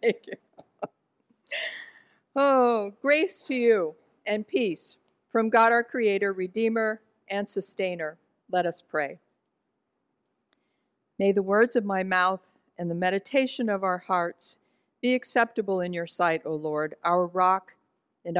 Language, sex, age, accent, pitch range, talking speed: English, female, 50-69, American, 190-245 Hz, 130 wpm